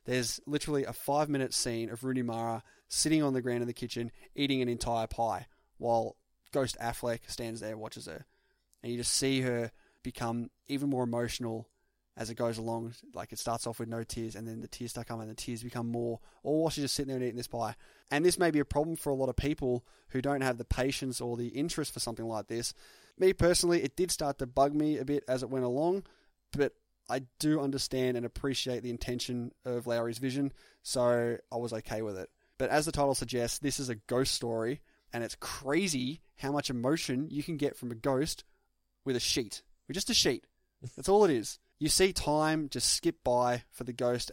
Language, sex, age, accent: English, male, 20-39, Australian